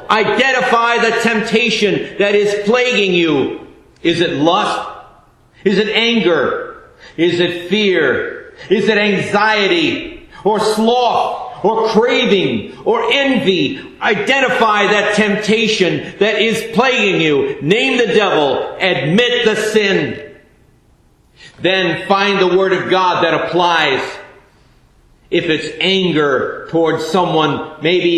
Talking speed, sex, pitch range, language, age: 110 wpm, male, 165-205 Hz, English, 50-69